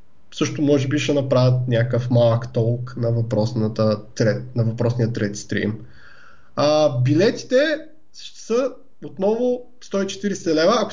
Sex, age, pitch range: male, 20-39, 125-185 Hz